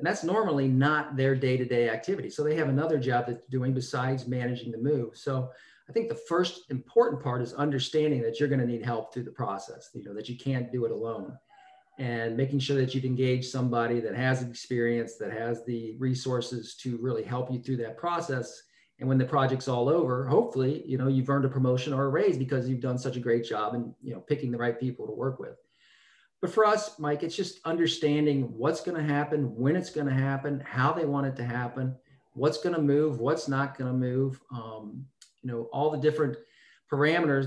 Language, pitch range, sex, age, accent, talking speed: English, 125-150 Hz, male, 40-59, American, 215 wpm